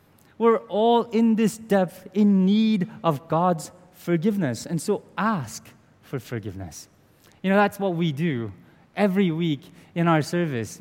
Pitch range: 145-200 Hz